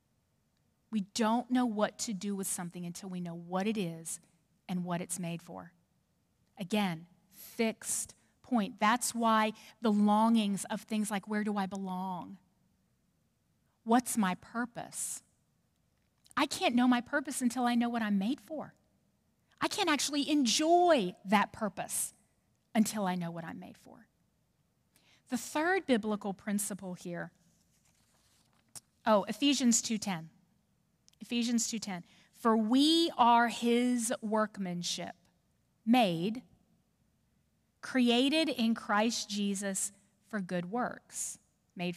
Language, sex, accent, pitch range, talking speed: English, female, American, 195-255 Hz, 120 wpm